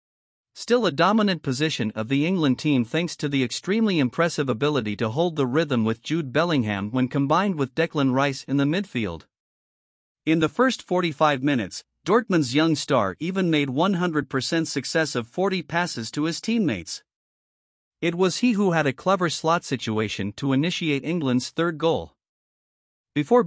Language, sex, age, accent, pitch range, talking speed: English, male, 50-69, American, 130-175 Hz, 160 wpm